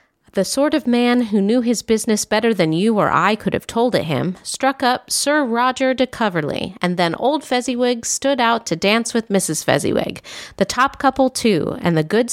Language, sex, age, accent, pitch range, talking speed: English, female, 40-59, American, 175-235 Hz, 205 wpm